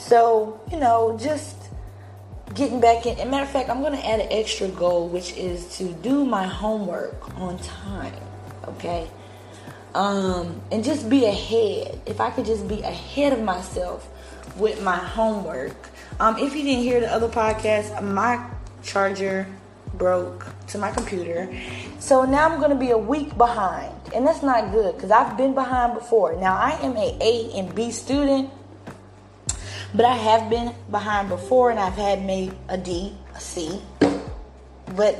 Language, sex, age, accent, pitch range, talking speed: English, female, 20-39, American, 175-245 Hz, 170 wpm